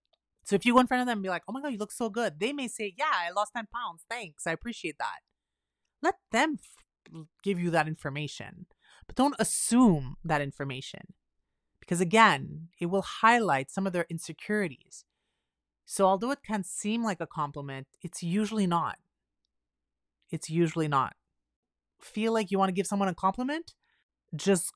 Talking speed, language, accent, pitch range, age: 180 wpm, English, American, 155-220 Hz, 30-49